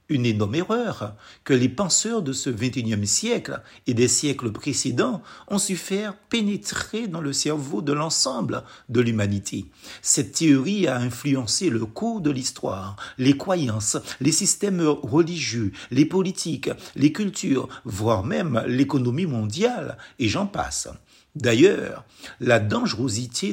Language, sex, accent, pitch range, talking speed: French, male, French, 120-185 Hz, 135 wpm